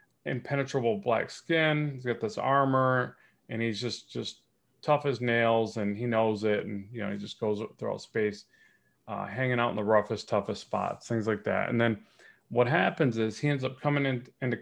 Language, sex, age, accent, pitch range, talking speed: English, male, 30-49, American, 110-130 Hz, 195 wpm